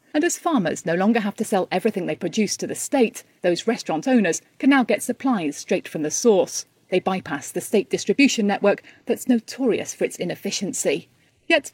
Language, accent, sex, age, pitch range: Chinese, British, female, 40-59, 185-260 Hz